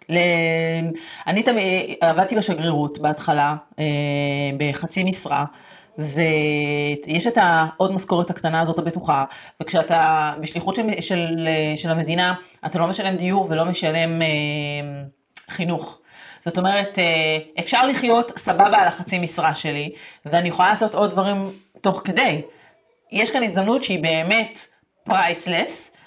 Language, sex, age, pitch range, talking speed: Hebrew, female, 30-49, 160-195 Hz, 125 wpm